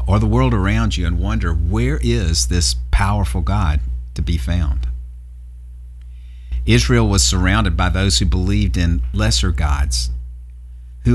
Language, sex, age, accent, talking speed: English, male, 50-69, American, 140 wpm